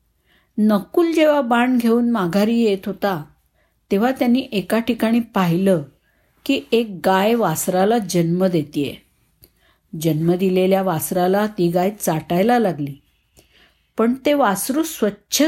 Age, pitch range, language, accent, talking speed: 50-69, 185-235 Hz, Marathi, native, 110 wpm